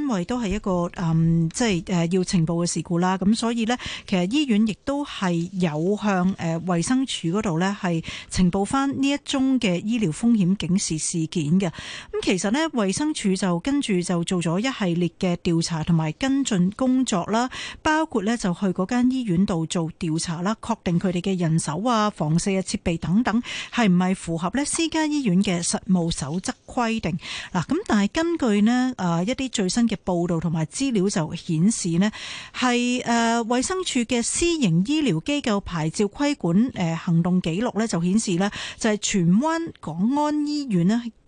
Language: Chinese